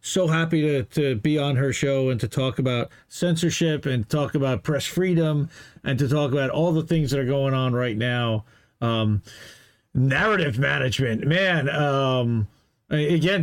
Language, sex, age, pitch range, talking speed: English, male, 40-59, 135-175 Hz, 165 wpm